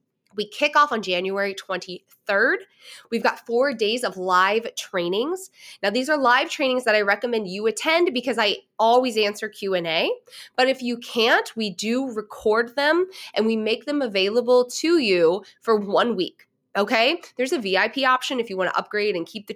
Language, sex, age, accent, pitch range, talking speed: English, female, 20-39, American, 200-265 Hz, 180 wpm